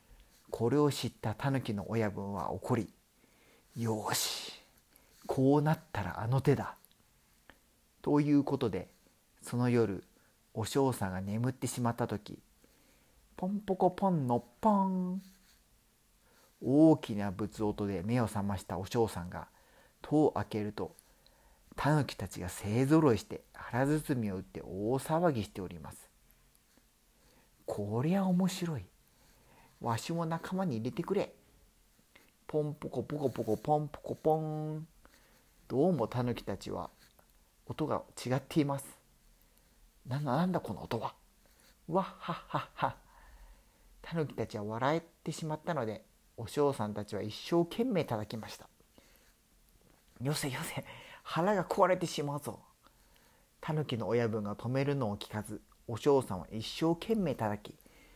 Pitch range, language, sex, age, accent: 105-155 Hz, Spanish, male, 50-69, Japanese